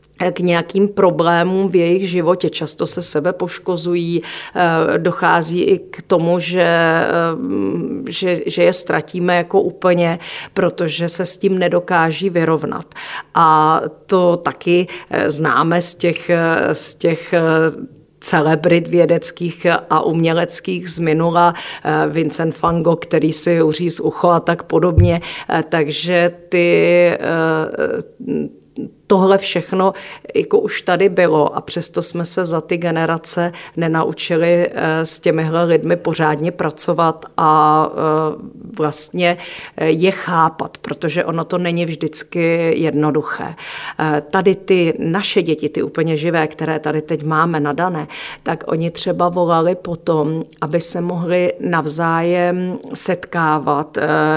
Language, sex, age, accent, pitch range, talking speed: Czech, female, 40-59, native, 160-180 Hz, 115 wpm